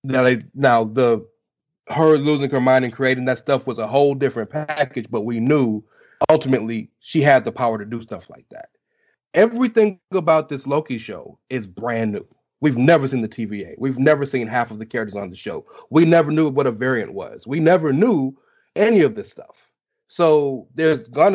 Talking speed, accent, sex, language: 195 wpm, American, male, English